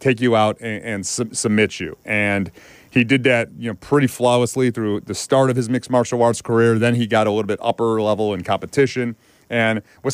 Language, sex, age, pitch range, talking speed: English, male, 30-49, 110-130 Hz, 220 wpm